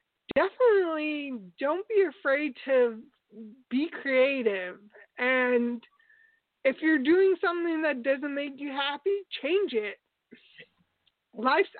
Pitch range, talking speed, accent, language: 240-300 Hz, 100 wpm, American, English